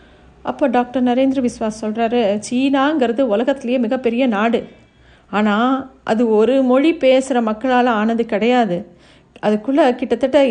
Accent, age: native, 50-69